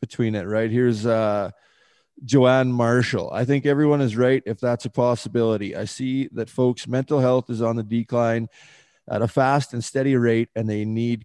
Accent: American